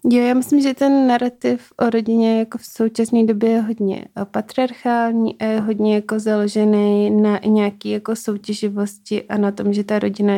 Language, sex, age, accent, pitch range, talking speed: Czech, female, 30-49, native, 195-210 Hz, 160 wpm